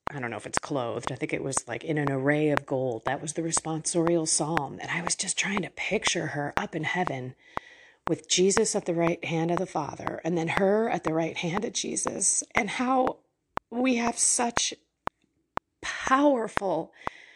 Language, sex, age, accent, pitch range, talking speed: English, female, 30-49, American, 170-230 Hz, 195 wpm